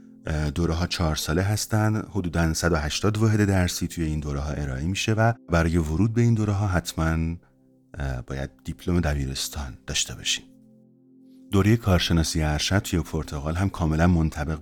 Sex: male